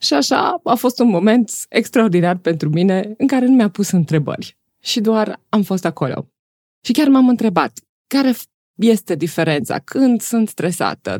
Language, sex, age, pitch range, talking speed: Romanian, female, 20-39, 165-220 Hz, 160 wpm